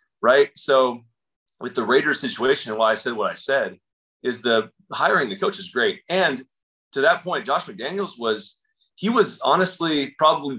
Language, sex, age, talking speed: English, male, 20-39, 170 wpm